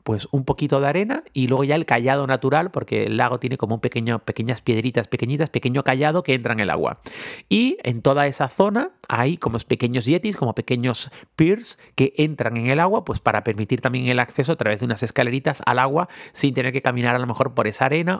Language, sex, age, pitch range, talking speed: Spanish, male, 40-59, 115-155 Hz, 225 wpm